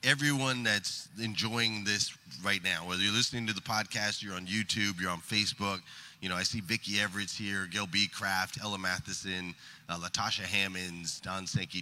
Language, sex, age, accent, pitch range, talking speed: English, male, 30-49, American, 100-135 Hz, 180 wpm